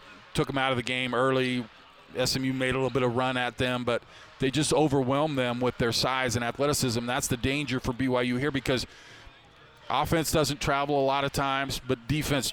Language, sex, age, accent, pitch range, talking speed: English, male, 40-59, American, 125-140 Hz, 200 wpm